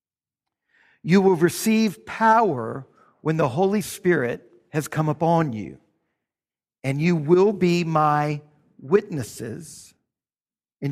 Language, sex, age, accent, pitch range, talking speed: English, male, 50-69, American, 150-205 Hz, 105 wpm